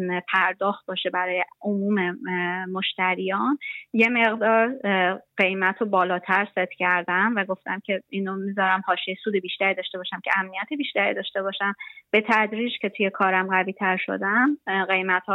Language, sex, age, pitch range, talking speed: Persian, female, 30-49, 185-210 Hz, 140 wpm